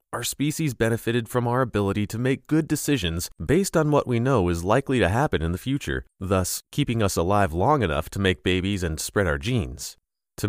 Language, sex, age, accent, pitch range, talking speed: English, male, 30-49, American, 95-140 Hz, 205 wpm